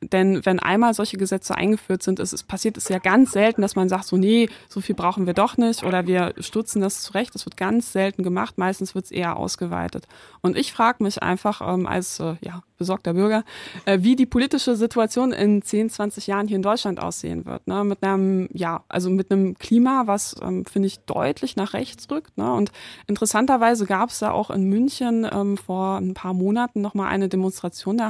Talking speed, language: 215 wpm, German